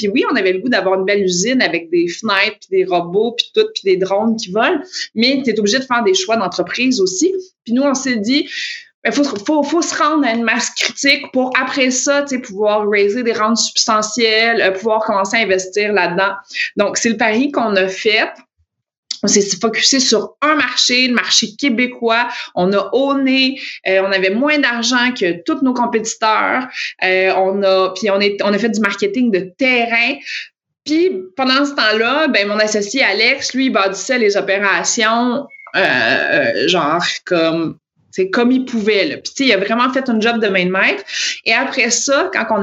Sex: female